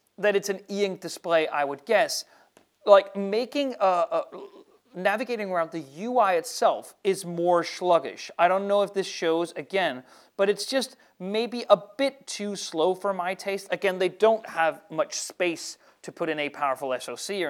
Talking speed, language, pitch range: 170 wpm, English, 165-215 Hz